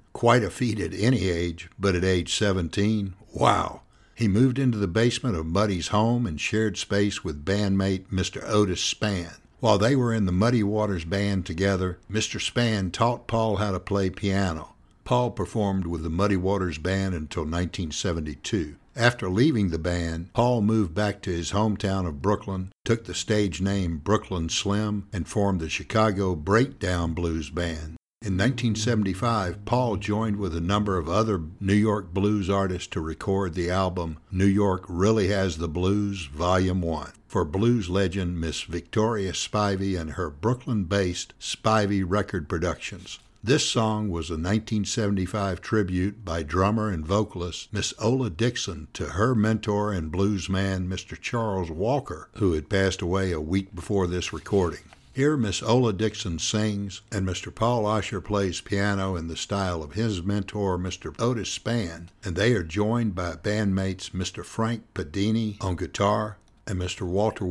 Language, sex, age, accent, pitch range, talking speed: English, male, 60-79, American, 90-110 Hz, 160 wpm